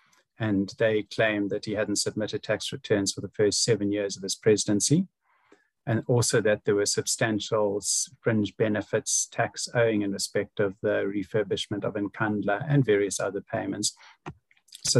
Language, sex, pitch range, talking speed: English, male, 100-115 Hz, 155 wpm